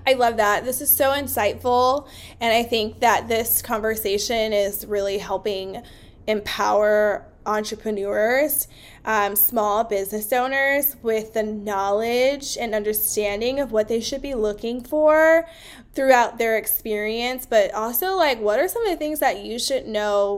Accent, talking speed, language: American, 145 wpm, English